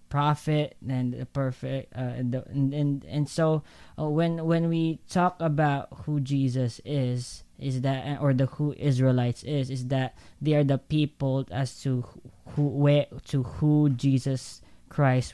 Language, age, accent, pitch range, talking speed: English, 20-39, Filipino, 125-145 Hz, 160 wpm